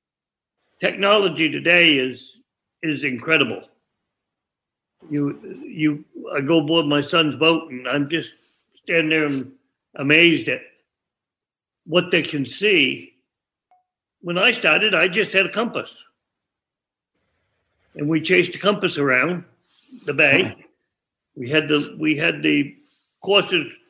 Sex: male